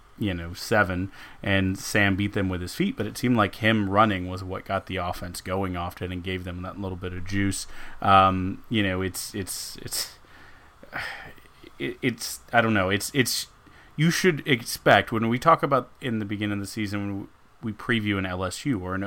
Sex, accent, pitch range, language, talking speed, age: male, American, 95-115 Hz, English, 200 wpm, 30-49